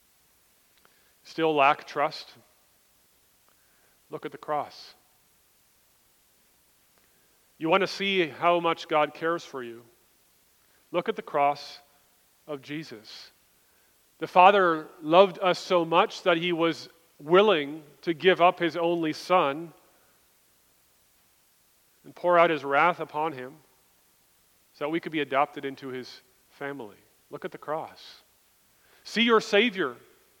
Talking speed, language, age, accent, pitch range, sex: 120 wpm, English, 40-59, American, 135-175 Hz, male